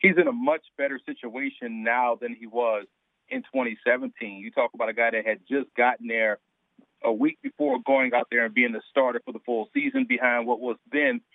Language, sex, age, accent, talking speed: English, male, 40-59, American, 210 wpm